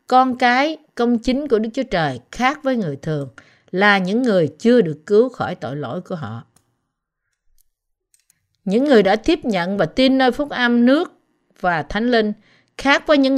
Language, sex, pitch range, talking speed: Vietnamese, female, 180-250 Hz, 180 wpm